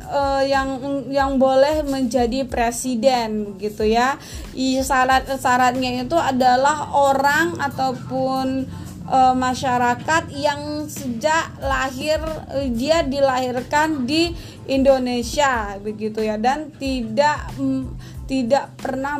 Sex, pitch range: female, 245-285 Hz